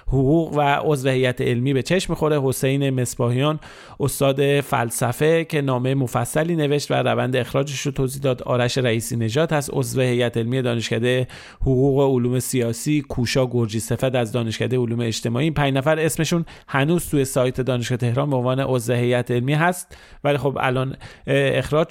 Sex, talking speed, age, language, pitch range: male, 155 wpm, 30-49, Persian, 125-155 Hz